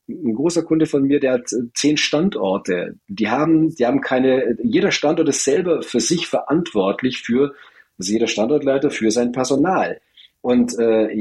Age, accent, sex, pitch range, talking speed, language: 40-59, German, male, 115-165 Hz, 160 wpm, English